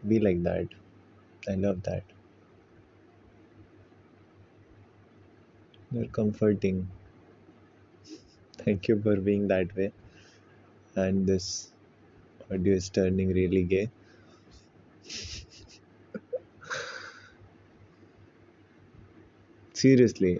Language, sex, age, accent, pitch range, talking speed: Hindi, male, 20-39, native, 95-110 Hz, 65 wpm